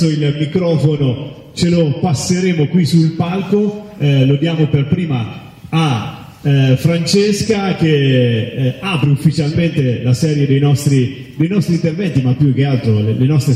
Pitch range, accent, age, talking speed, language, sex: 125-155 Hz, native, 30-49, 150 wpm, Italian, male